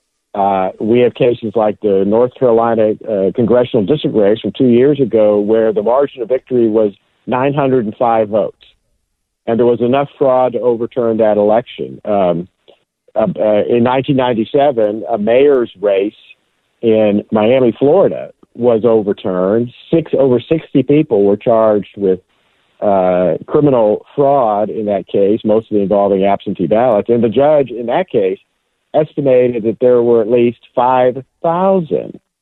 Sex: male